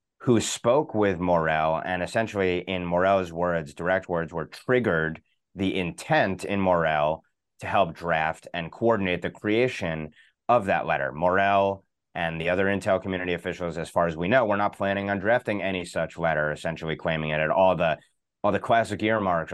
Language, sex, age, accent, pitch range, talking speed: English, male, 30-49, American, 85-95 Hz, 175 wpm